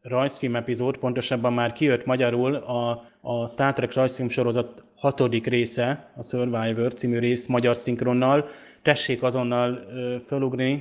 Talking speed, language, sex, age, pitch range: 130 wpm, Hungarian, male, 20-39, 120-135 Hz